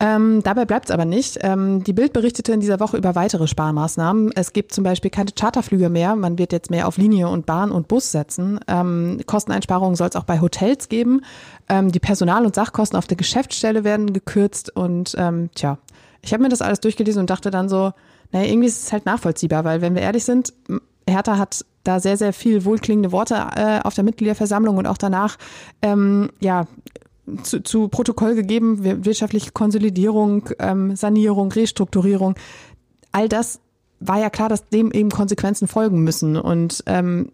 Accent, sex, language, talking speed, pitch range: German, female, German, 185 wpm, 180-215 Hz